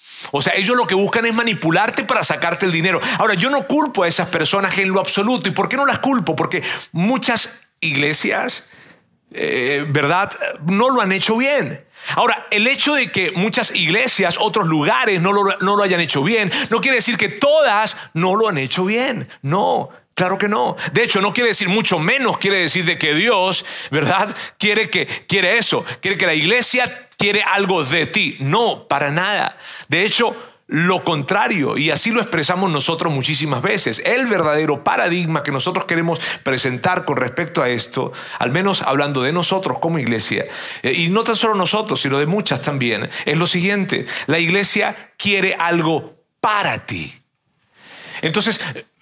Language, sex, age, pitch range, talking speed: Spanish, male, 40-59, 165-225 Hz, 175 wpm